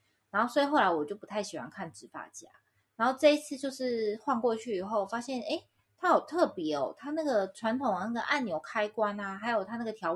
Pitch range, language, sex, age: 180-265 Hz, Chinese, female, 20-39